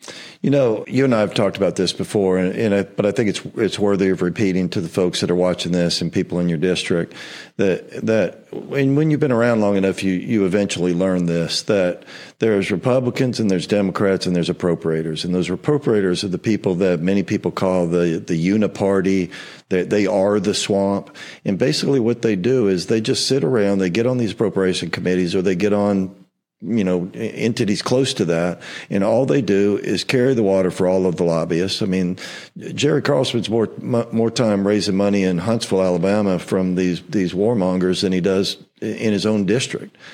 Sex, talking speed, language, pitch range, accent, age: male, 205 wpm, English, 90-110 Hz, American, 50-69